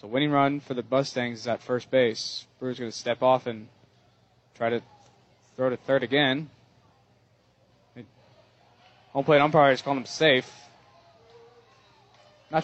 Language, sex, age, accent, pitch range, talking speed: English, male, 20-39, American, 120-145 Hz, 140 wpm